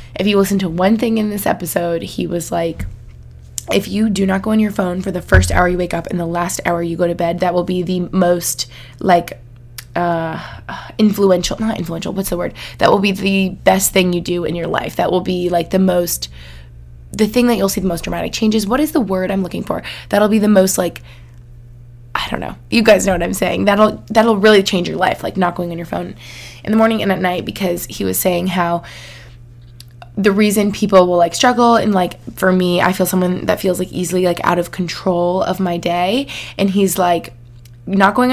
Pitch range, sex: 170-195 Hz, female